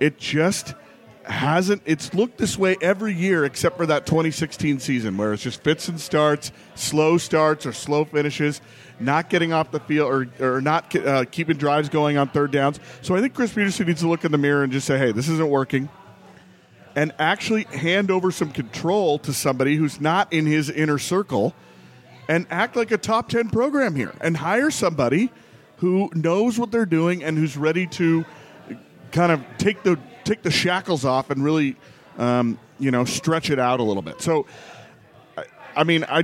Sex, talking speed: male, 190 wpm